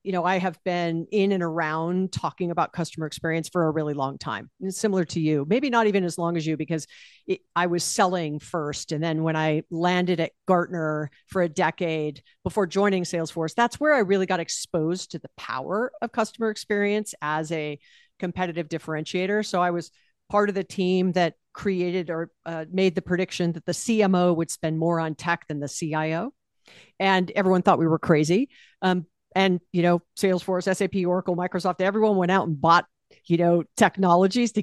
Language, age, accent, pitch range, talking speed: English, 50-69, American, 165-195 Hz, 190 wpm